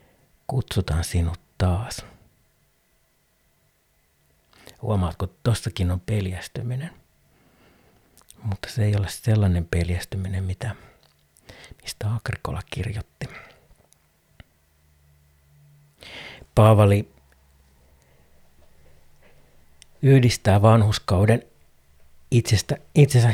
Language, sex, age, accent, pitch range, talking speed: Finnish, male, 60-79, native, 75-105 Hz, 50 wpm